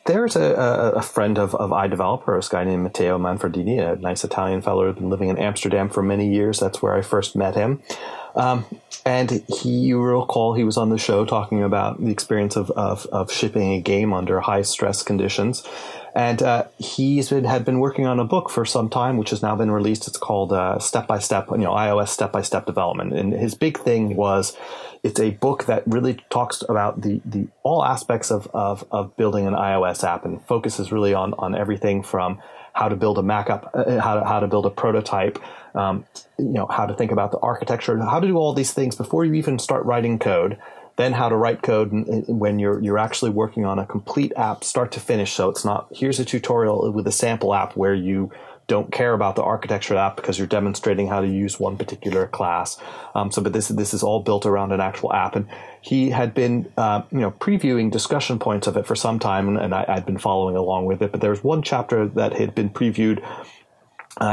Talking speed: 225 wpm